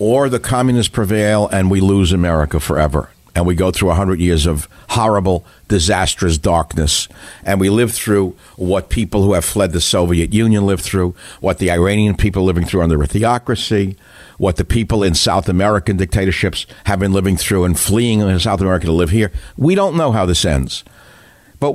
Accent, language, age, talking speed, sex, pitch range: American, English, 60-79, 190 wpm, male, 90-115 Hz